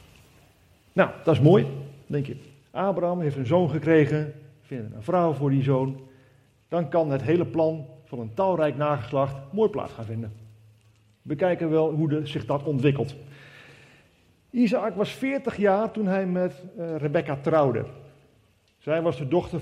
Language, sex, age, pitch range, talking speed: Dutch, male, 50-69, 115-165 Hz, 155 wpm